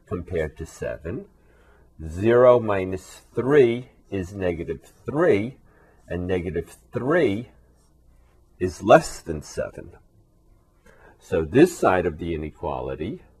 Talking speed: 100 wpm